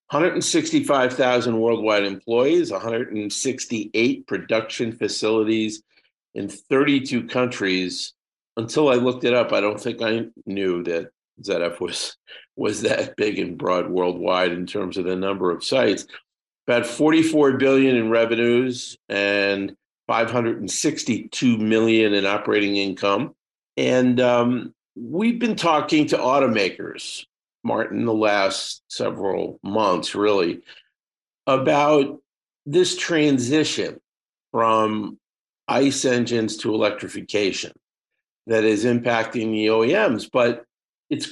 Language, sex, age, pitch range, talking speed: English, male, 50-69, 110-135 Hz, 105 wpm